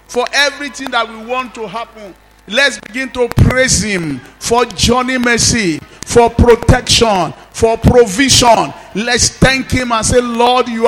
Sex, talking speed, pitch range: male, 145 wpm, 225-265 Hz